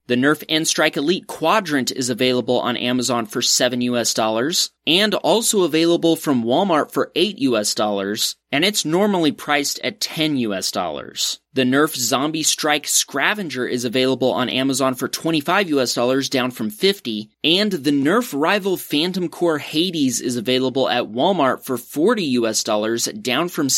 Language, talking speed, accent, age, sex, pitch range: English, 160 wpm, American, 30-49, male, 125-160 Hz